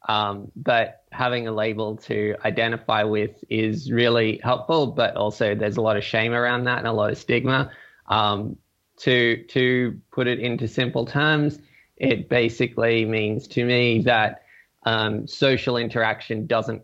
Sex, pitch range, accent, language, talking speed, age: male, 105-125 Hz, Australian, English, 155 wpm, 20-39